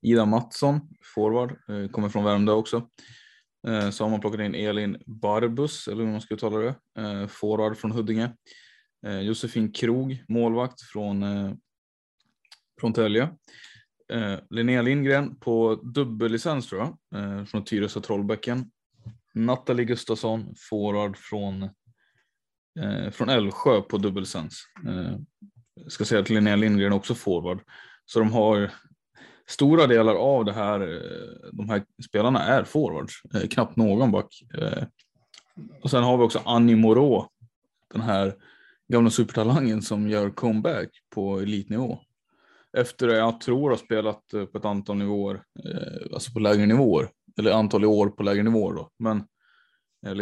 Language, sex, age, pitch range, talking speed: Swedish, male, 20-39, 105-115 Hz, 135 wpm